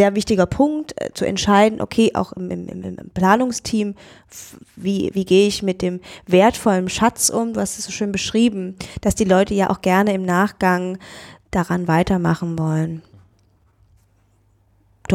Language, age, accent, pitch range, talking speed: German, 20-39, German, 175-220 Hz, 160 wpm